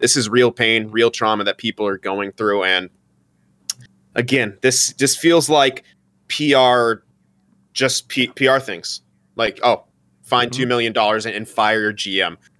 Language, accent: English, American